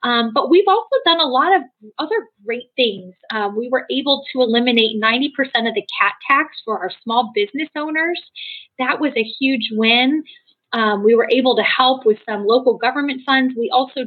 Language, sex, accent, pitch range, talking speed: English, female, American, 215-275 Hz, 190 wpm